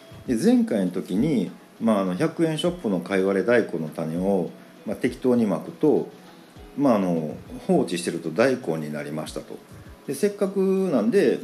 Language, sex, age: Japanese, male, 50-69